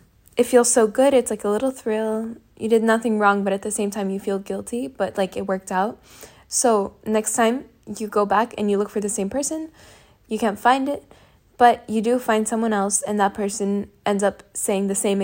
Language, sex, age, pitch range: English, female, 10-29, 195-225 Hz